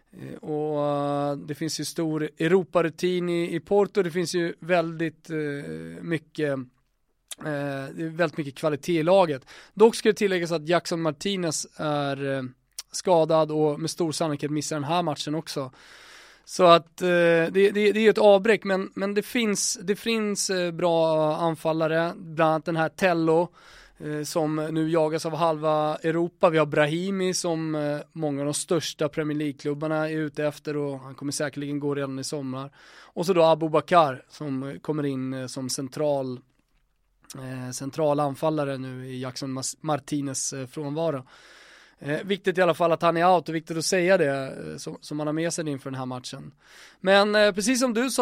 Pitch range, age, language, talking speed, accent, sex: 145-175 Hz, 20-39, English, 155 wpm, Swedish, male